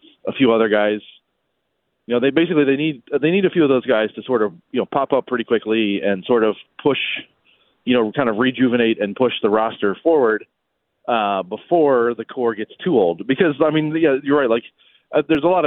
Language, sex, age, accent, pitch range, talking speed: English, male, 30-49, American, 105-130 Hz, 220 wpm